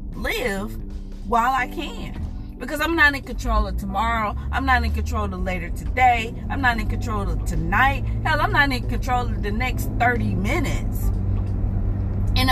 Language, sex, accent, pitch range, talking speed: English, female, American, 70-100 Hz, 170 wpm